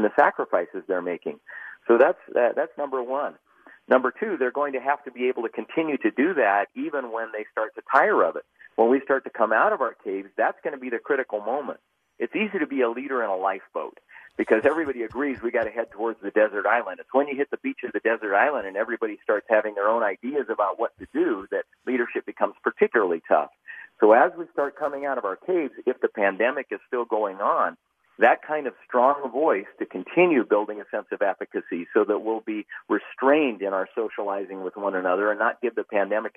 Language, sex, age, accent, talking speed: English, male, 40-59, American, 225 wpm